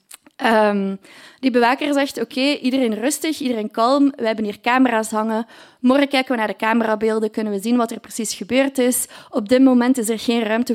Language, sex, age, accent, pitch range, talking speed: Dutch, female, 20-39, Dutch, 220-265 Hz, 190 wpm